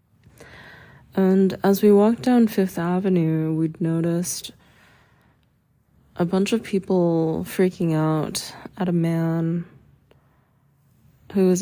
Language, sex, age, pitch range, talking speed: English, female, 20-39, 160-190 Hz, 105 wpm